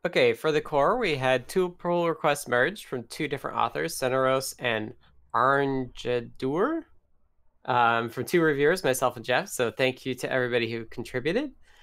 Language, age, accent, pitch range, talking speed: English, 20-39, American, 120-155 Hz, 155 wpm